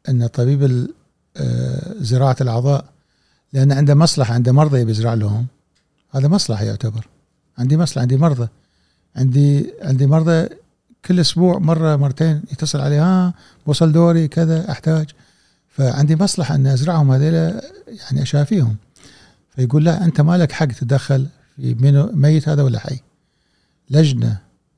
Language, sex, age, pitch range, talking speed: Arabic, male, 50-69, 125-155 Hz, 130 wpm